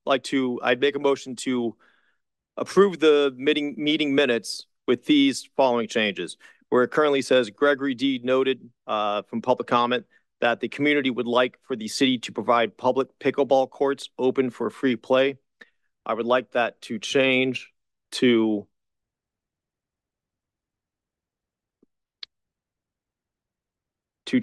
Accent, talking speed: American, 130 wpm